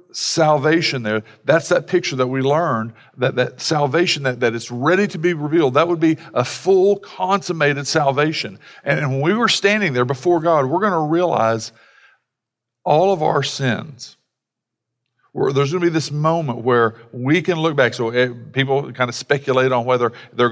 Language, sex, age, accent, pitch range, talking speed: English, male, 50-69, American, 125-160 Hz, 180 wpm